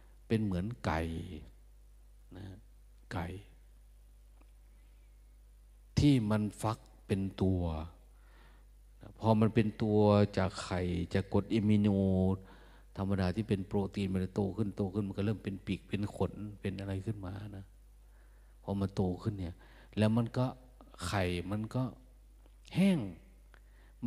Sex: male